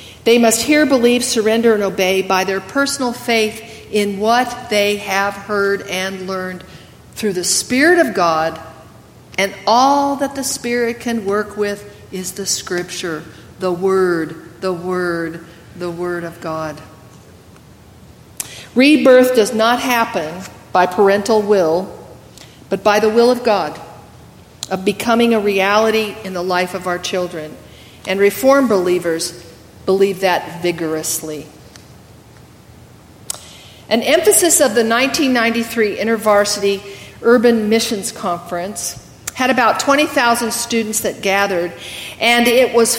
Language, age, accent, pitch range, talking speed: English, 50-69, American, 180-235 Hz, 125 wpm